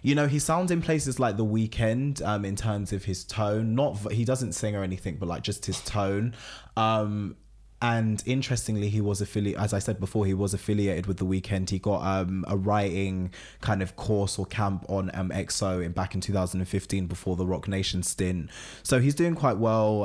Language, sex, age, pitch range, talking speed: English, male, 20-39, 95-110 Hz, 205 wpm